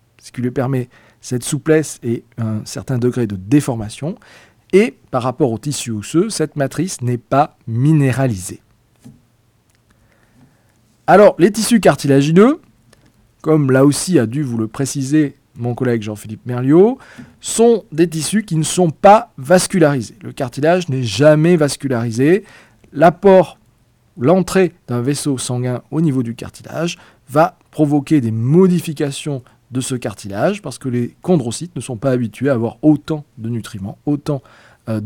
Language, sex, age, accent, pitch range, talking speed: French, male, 40-59, French, 115-155 Hz, 140 wpm